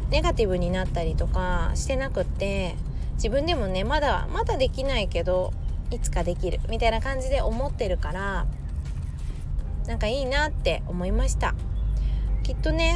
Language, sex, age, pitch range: Japanese, female, 20-39, 75-85 Hz